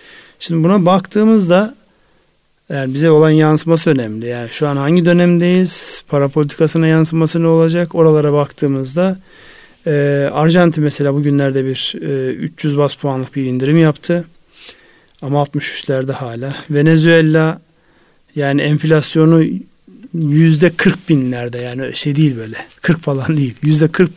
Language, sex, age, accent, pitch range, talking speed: Turkish, male, 40-59, native, 140-165 Hz, 125 wpm